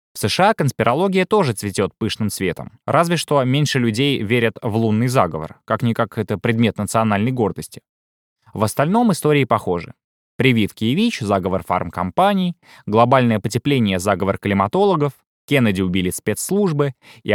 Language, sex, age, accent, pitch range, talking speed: Russian, male, 20-39, native, 105-150 Hz, 130 wpm